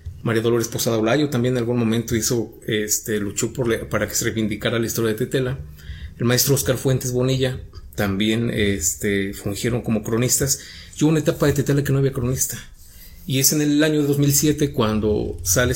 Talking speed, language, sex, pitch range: 185 wpm, Spanish, male, 110-135 Hz